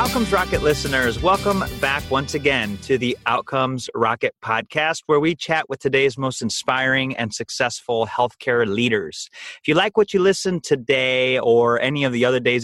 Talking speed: 170 wpm